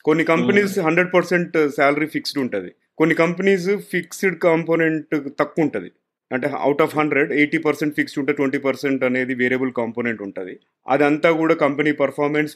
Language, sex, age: Telugu, male, 30-49